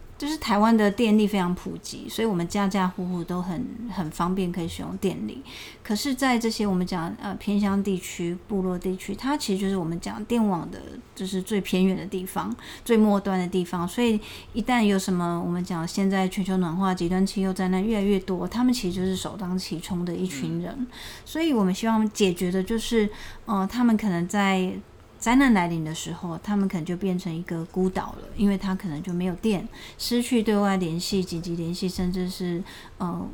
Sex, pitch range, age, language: female, 180-220 Hz, 30-49, Chinese